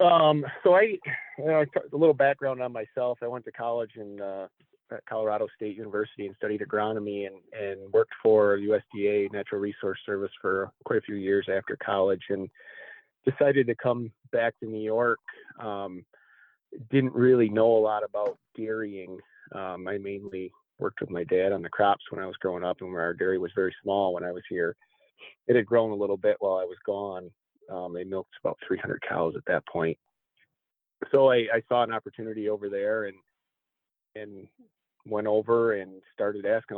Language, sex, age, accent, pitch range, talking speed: English, male, 30-49, American, 100-115 Hz, 185 wpm